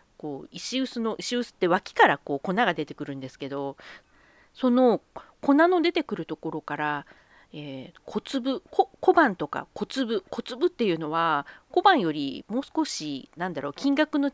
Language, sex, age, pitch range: Japanese, female, 40-59, 160-270 Hz